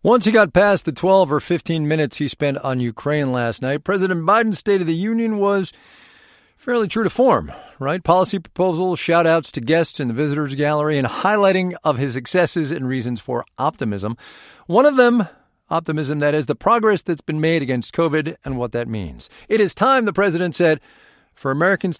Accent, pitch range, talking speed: American, 130-185 Hz, 195 wpm